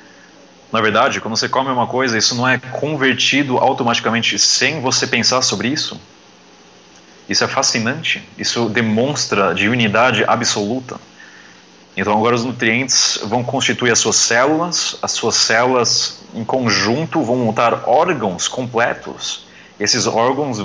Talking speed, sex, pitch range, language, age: 130 wpm, male, 110-125 Hz, Portuguese, 30-49